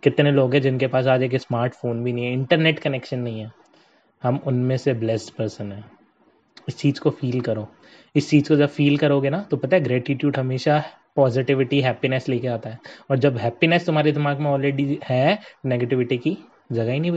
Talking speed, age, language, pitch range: 120 wpm, 20-39, Hindi, 130-170 Hz